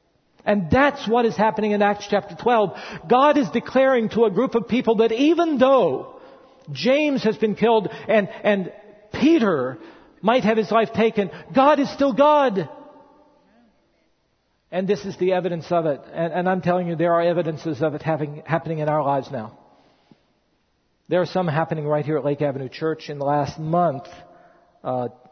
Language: English